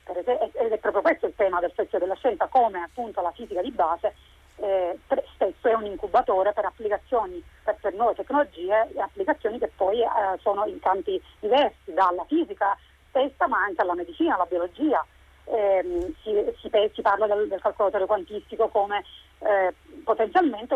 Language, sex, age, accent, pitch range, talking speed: Italian, female, 40-59, native, 205-305 Hz, 160 wpm